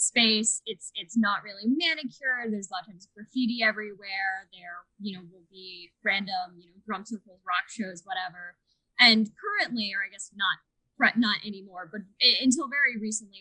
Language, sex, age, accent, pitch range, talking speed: English, female, 10-29, American, 190-235 Hz, 170 wpm